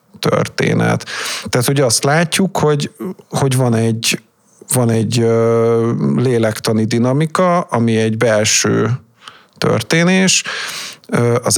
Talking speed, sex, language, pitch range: 95 wpm, male, English, 110-135 Hz